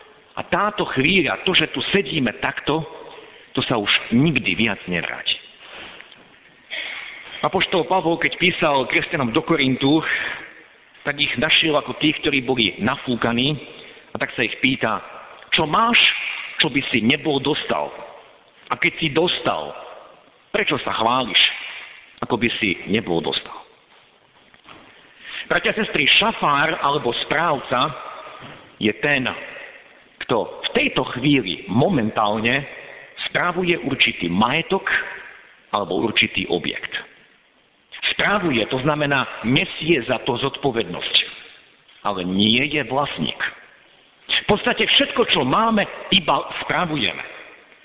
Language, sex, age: Slovak, male, 50-69